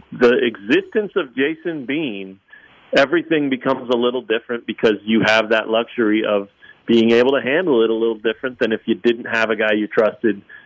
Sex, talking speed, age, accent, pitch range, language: male, 185 wpm, 40-59, American, 115-155 Hz, English